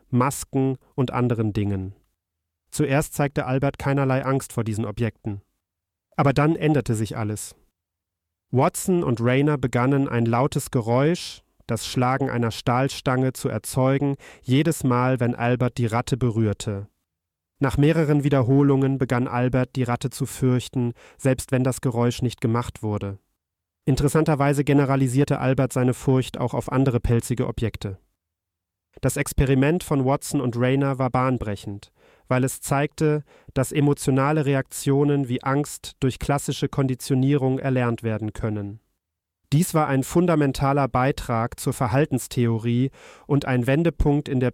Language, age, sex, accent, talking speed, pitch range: German, 40-59, male, German, 130 wpm, 115-140 Hz